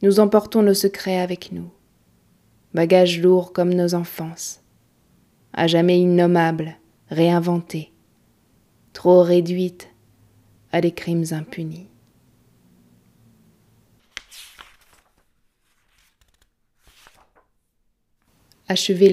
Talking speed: 70 wpm